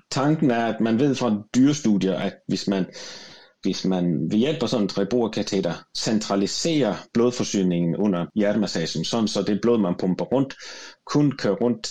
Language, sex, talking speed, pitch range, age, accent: Danish, male, 165 wpm, 95-120 Hz, 30-49, native